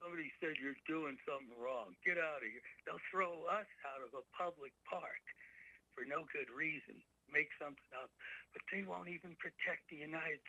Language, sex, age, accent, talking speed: English, male, 60-79, American, 185 wpm